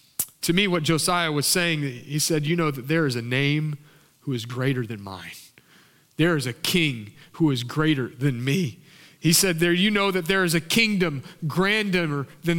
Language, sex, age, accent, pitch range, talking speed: English, male, 30-49, American, 135-175 Hz, 190 wpm